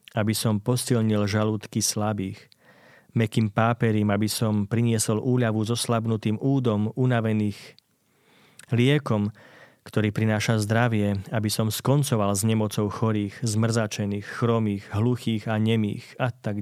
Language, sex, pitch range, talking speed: Slovak, male, 105-125 Hz, 120 wpm